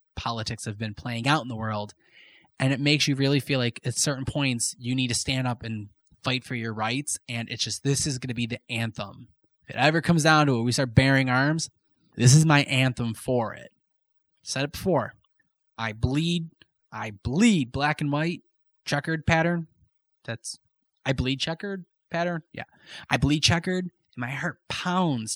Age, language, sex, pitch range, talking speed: 20-39, English, male, 115-140 Hz, 185 wpm